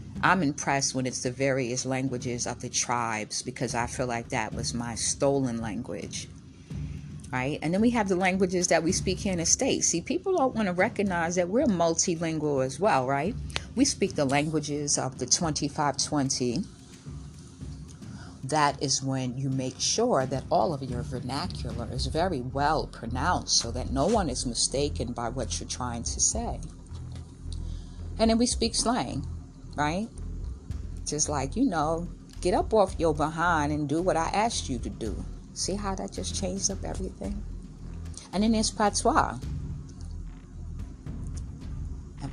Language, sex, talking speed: English, female, 160 wpm